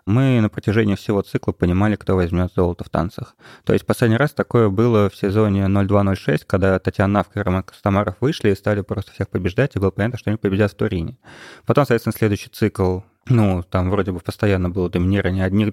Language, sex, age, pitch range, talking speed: Russian, male, 20-39, 95-110 Hz, 200 wpm